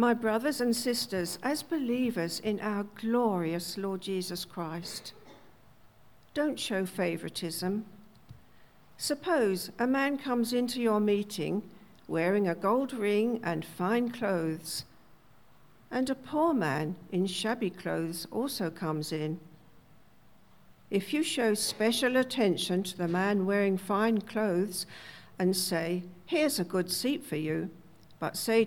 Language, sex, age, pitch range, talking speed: English, female, 60-79, 180-240 Hz, 125 wpm